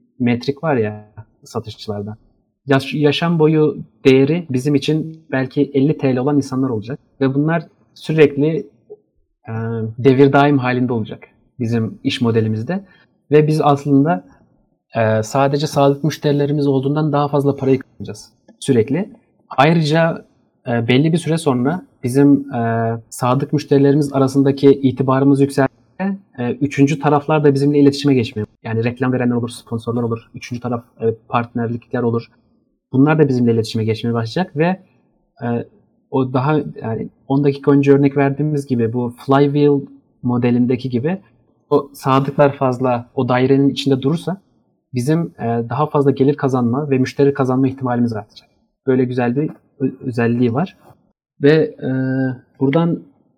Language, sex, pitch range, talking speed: Turkish, male, 120-145 Hz, 135 wpm